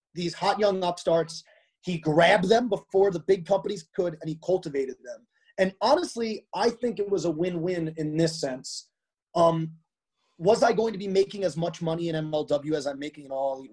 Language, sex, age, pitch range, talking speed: Hebrew, male, 30-49, 155-200 Hz, 190 wpm